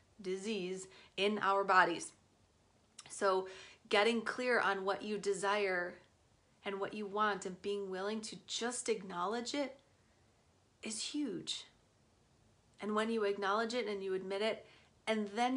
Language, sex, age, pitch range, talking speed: English, female, 30-49, 180-205 Hz, 135 wpm